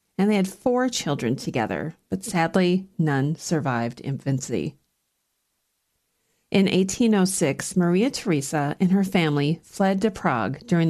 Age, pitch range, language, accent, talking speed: 40-59, 150-205 Hz, English, American, 120 wpm